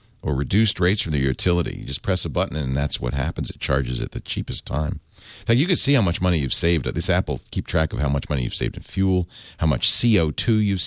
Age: 40-59